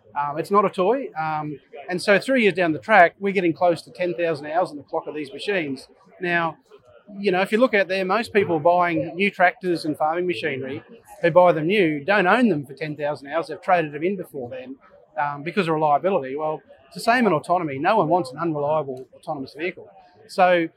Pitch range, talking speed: 155-185 Hz, 215 wpm